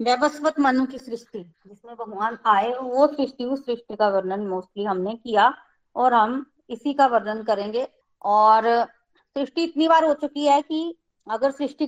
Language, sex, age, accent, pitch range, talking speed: Hindi, female, 20-39, native, 230-275 Hz, 165 wpm